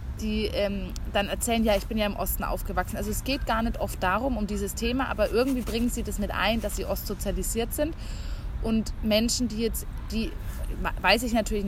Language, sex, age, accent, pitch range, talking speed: German, female, 20-39, German, 200-240 Hz, 205 wpm